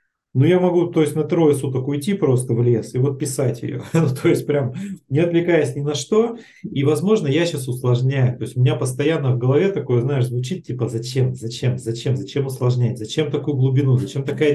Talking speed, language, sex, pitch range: 210 wpm, Russian, male, 130-160 Hz